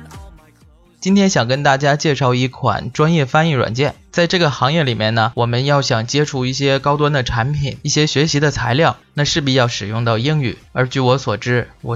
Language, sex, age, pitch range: Chinese, male, 20-39, 120-145 Hz